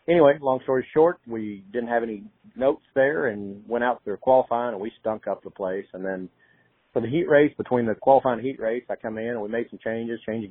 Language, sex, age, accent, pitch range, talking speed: English, male, 40-59, American, 100-125 Hz, 240 wpm